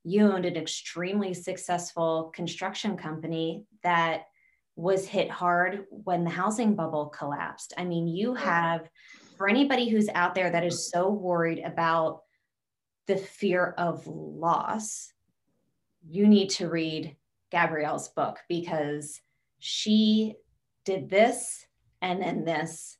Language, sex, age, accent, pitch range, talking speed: English, female, 20-39, American, 160-190 Hz, 125 wpm